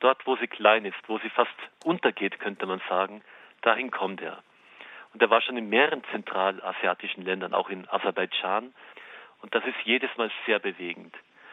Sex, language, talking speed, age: male, German, 170 wpm, 40-59